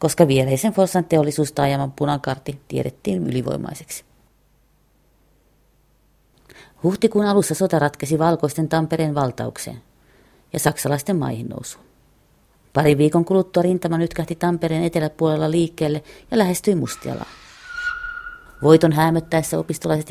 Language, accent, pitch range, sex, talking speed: Finnish, native, 145-180 Hz, female, 100 wpm